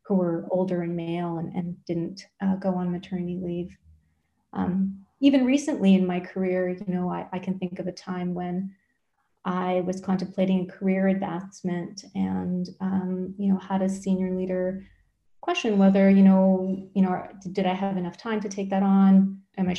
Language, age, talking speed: English, 30-49, 180 wpm